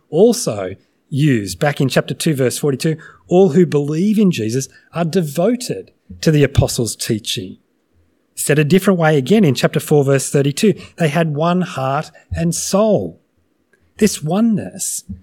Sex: male